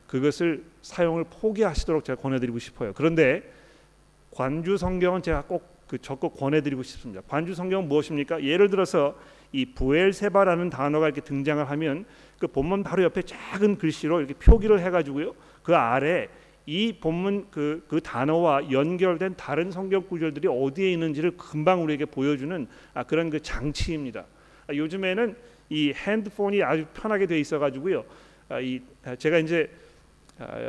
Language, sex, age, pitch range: Korean, male, 40-59, 140-175 Hz